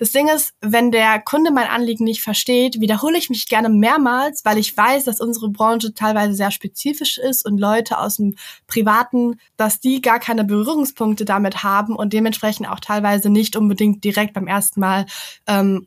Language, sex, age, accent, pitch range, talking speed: German, female, 10-29, German, 210-250 Hz, 180 wpm